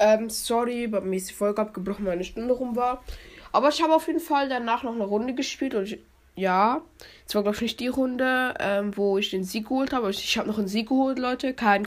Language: German